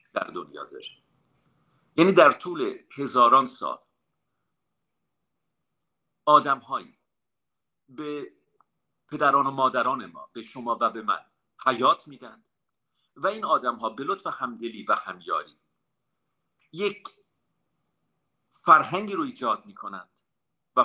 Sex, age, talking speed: male, 50-69, 100 wpm